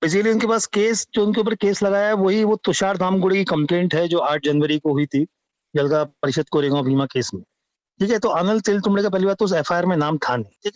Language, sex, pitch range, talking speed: English, male, 155-205 Hz, 240 wpm